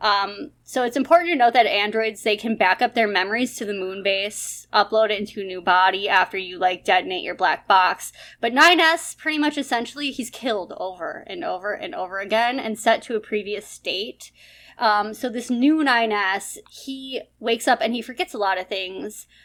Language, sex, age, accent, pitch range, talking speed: English, female, 20-39, American, 205-265 Hz, 200 wpm